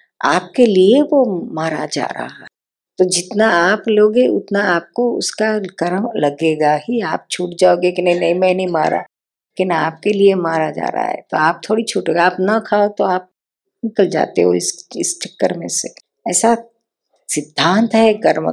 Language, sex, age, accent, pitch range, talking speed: Hindi, female, 50-69, native, 160-190 Hz, 170 wpm